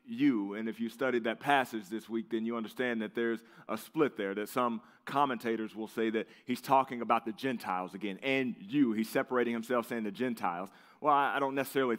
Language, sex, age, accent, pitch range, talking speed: English, male, 30-49, American, 115-140 Hz, 205 wpm